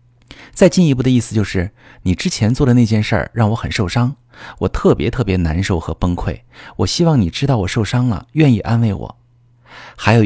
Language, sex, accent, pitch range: Chinese, male, native, 90-125 Hz